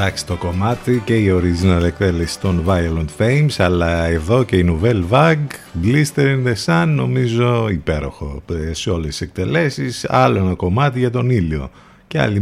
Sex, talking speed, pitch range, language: male, 160 wpm, 90-125 Hz, Greek